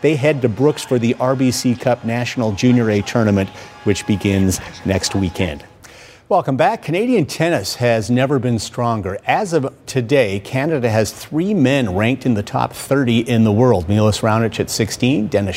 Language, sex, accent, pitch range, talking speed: English, male, American, 110-135 Hz, 170 wpm